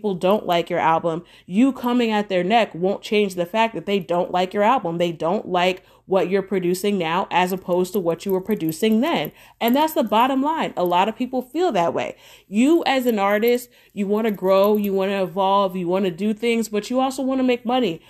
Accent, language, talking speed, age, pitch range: American, English, 230 wpm, 30-49, 185-220 Hz